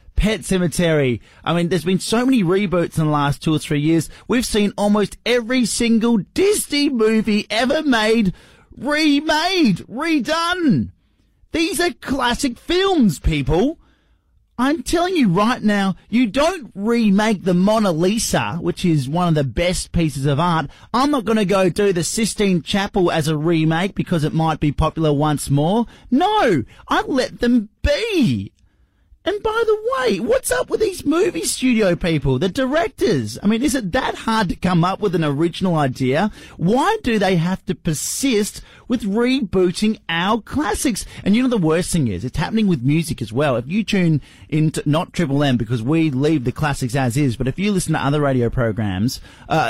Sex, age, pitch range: male, 30-49, 155-240 Hz